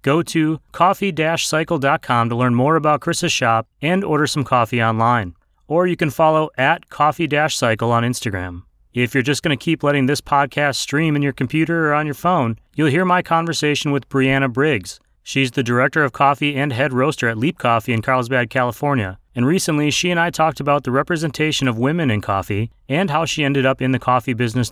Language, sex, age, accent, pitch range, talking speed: English, male, 30-49, American, 120-155 Hz, 200 wpm